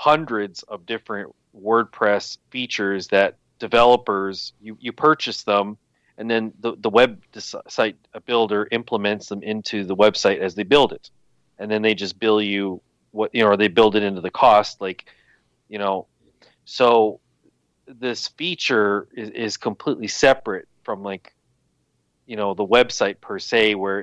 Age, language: 30-49, English